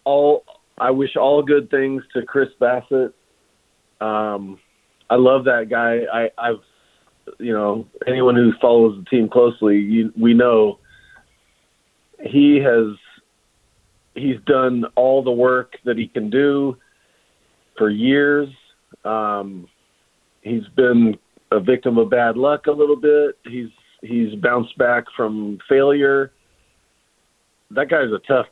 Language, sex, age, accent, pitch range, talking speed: English, male, 40-59, American, 110-140 Hz, 130 wpm